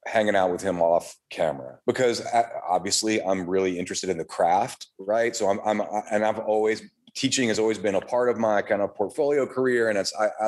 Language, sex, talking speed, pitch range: English, male, 205 wpm, 105-125 Hz